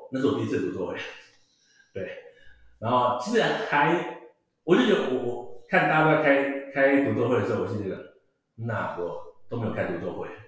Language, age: Chinese, 60-79